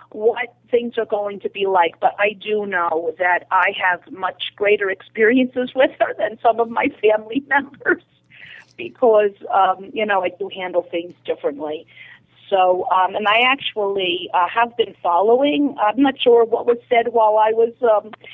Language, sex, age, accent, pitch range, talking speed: English, female, 40-59, American, 180-225 Hz, 175 wpm